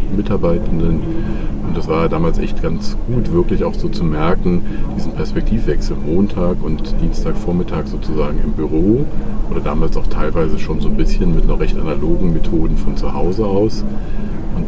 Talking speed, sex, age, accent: 160 wpm, male, 40-59, German